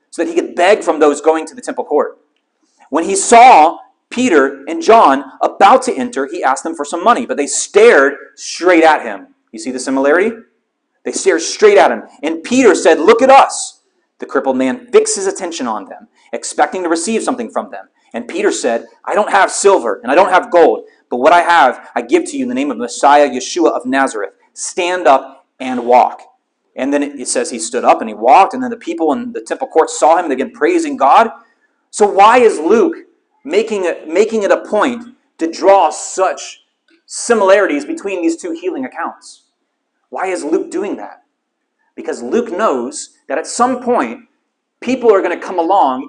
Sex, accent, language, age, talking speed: male, American, English, 30-49, 200 wpm